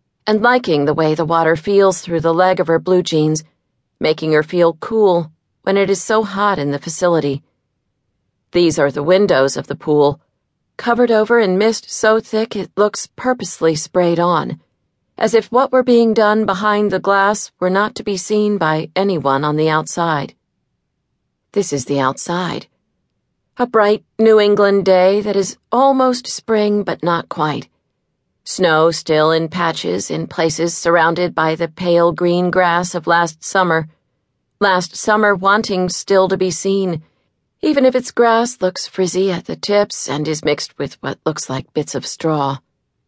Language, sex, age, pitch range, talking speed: English, female, 40-59, 160-205 Hz, 165 wpm